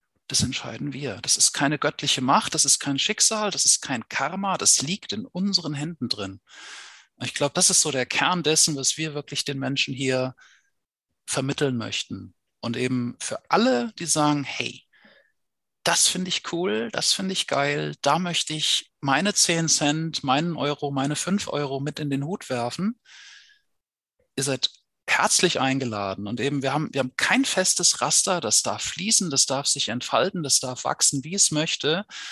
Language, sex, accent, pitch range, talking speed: German, male, German, 140-195 Hz, 175 wpm